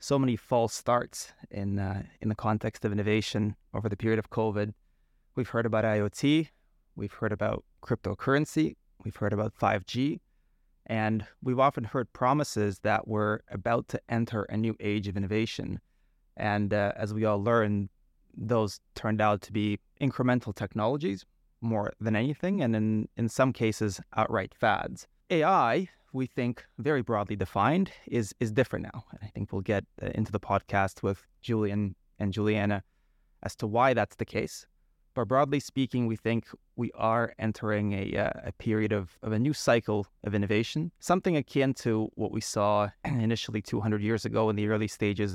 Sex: male